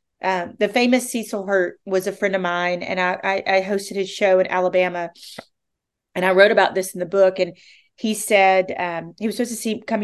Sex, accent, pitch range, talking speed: female, American, 180-225 Hz, 220 wpm